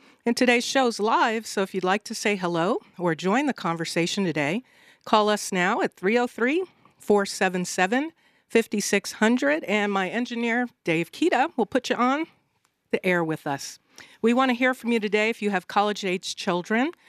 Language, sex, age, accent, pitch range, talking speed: English, female, 50-69, American, 180-230 Hz, 160 wpm